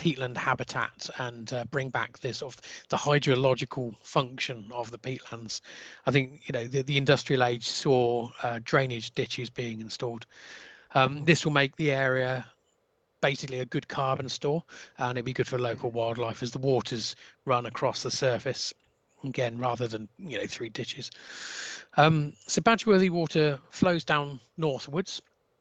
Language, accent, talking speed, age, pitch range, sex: English, British, 155 wpm, 40-59, 125-150 Hz, male